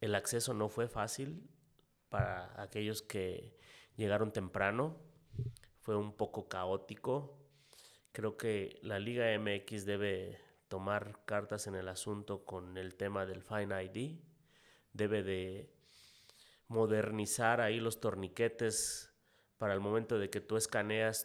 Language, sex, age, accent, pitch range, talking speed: Spanish, male, 30-49, Mexican, 100-130 Hz, 125 wpm